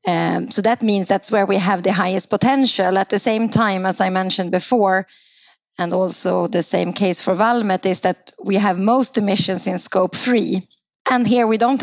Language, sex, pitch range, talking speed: English, female, 190-230 Hz, 200 wpm